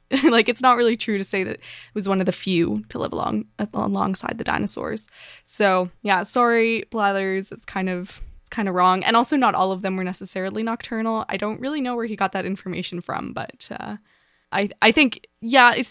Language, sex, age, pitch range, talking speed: English, female, 20-39, 190-230 Hz, 215 wpm